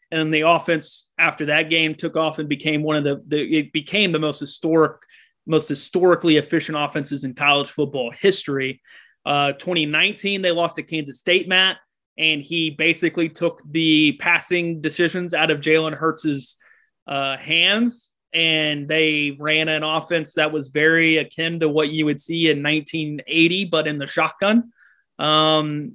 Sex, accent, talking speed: male, American, 160 wpm